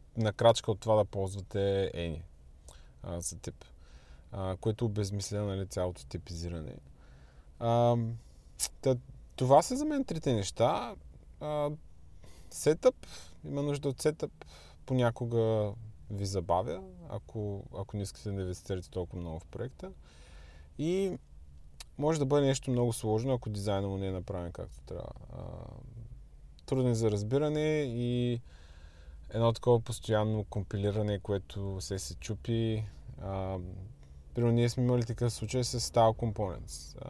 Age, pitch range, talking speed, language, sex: 20-39, 90-120 Hz, 125 wpm, Bulgarian, male